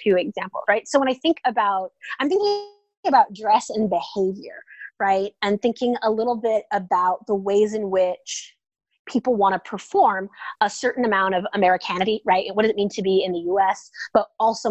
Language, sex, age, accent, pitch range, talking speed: English, female, 20-39, American, 190-235 Hz, 190 wpm